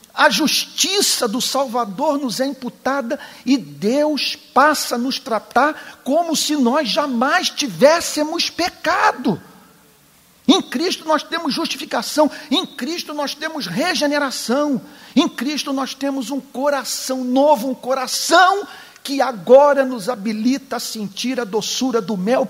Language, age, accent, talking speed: Portuguese, 50-69, Brazilian, 130 wpm